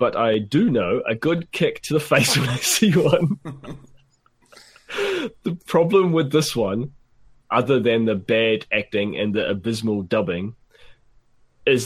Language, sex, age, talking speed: English, male, 20-39, 145 wpm